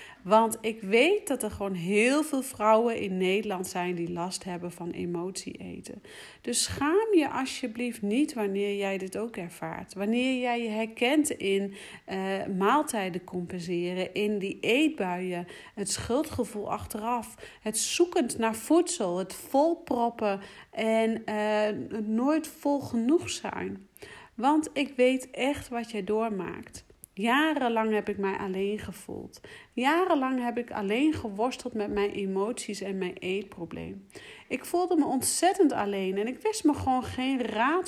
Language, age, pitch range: Dutch, 40-59, 200-260 Hz